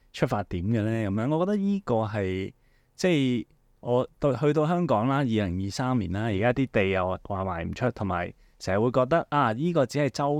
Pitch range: 100-135 Hz